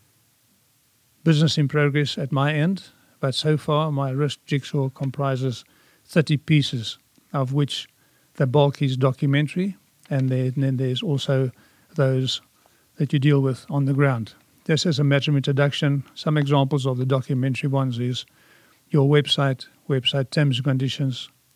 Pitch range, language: 130-150 Hz, English